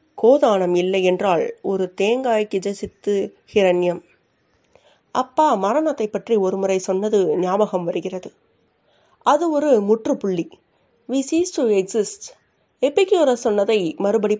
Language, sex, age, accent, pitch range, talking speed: Tamil, female, 30-49, native, 195-250 Hz, 105 wpm